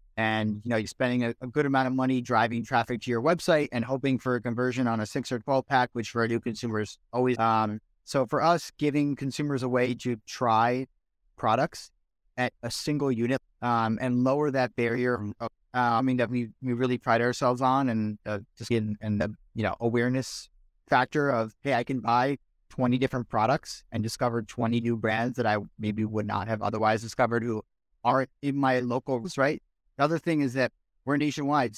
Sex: male